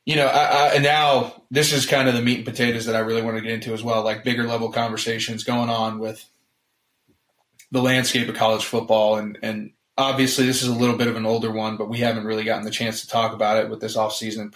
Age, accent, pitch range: 20-39, American, 110-125 Hz